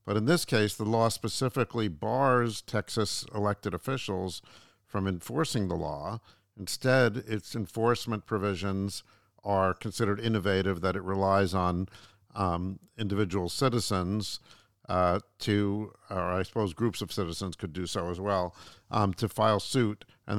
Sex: male